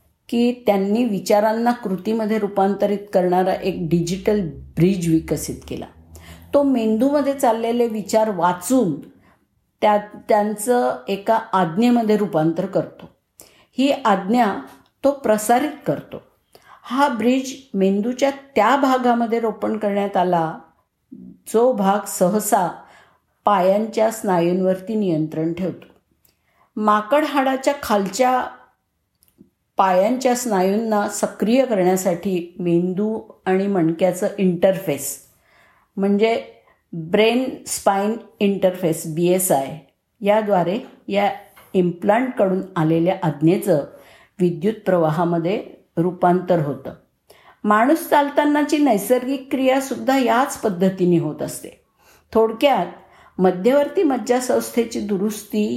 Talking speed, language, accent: 85 wpm, Marathi, native